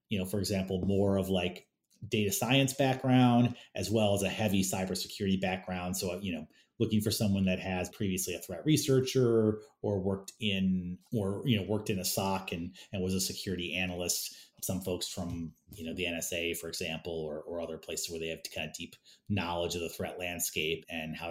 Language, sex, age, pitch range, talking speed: English, male, 30-49, 95-110 Hz, 200 wpm